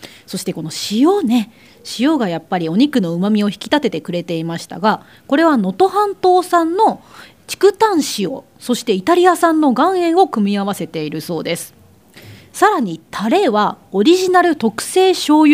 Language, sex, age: Japanese, female, 30-49